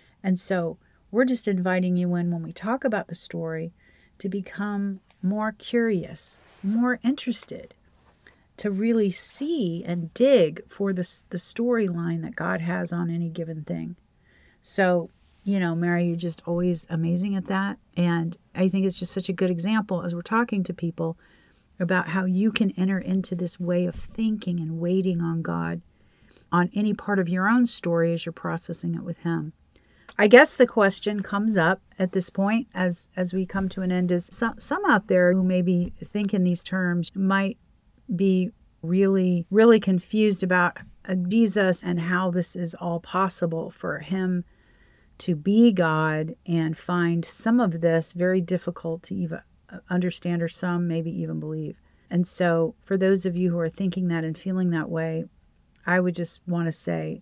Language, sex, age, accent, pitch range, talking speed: English, female, 40-59, American, 170-195 Hz, 175 wpm